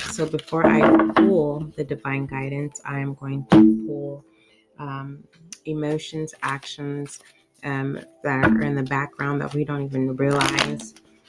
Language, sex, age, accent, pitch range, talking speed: English, female, 30-49, American, 135-165 Hz, 140 wpm